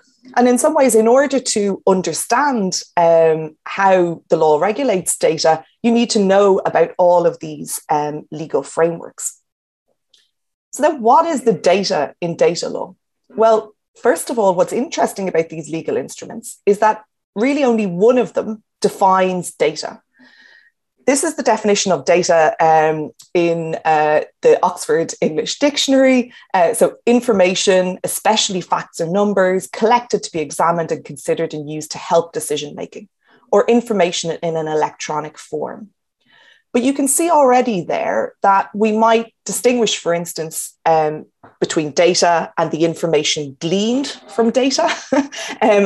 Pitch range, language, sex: 165-240 Hz, English, female